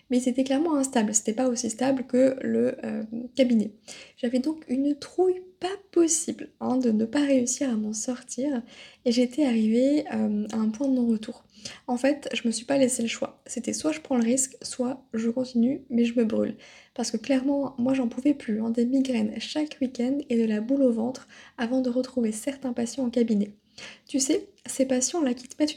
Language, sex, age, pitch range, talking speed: French, female, 20-39, 235-275 Hz, 210 wpm